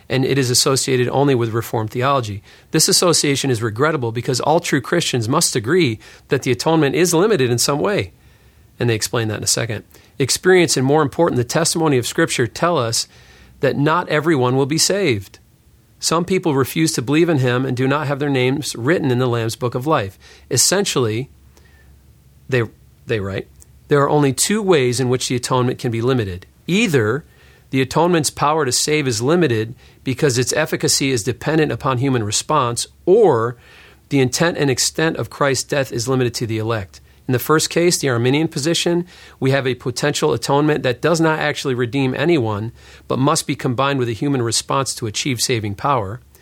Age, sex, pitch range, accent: 40-59, male, 120-150 Hz, American